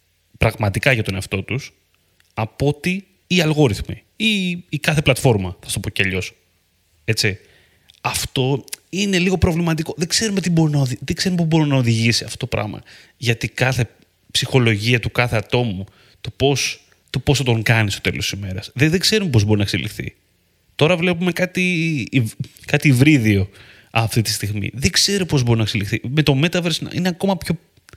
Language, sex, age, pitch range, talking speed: Greek, male, 30-49, 100-150 Hz, 170 wpm